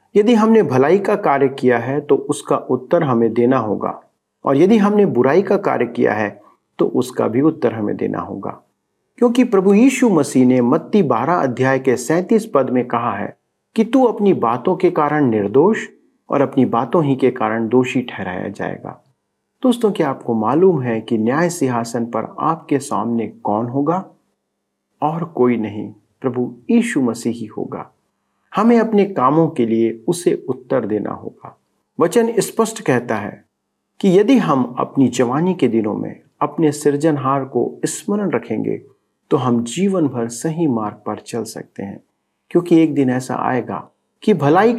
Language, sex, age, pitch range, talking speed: Hindi, male, 50-69, 120-190 Hz, 165 wpm